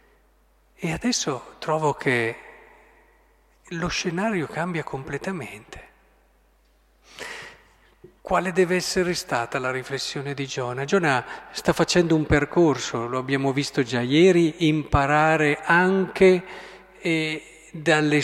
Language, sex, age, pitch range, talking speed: Italian, male, 50-69, 140-185 Hz, 95 wpm